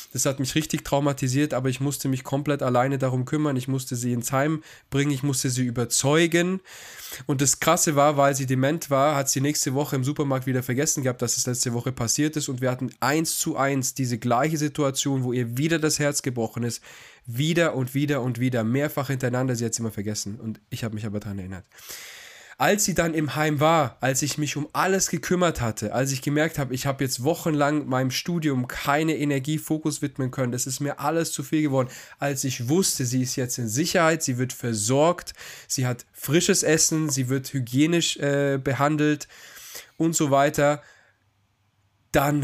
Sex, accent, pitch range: male, German, 120-150 Hz